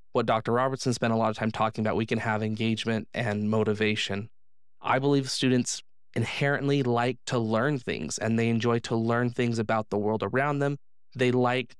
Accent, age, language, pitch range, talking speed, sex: American, 20-39, English, 110-135 Hz, 190 wpm, male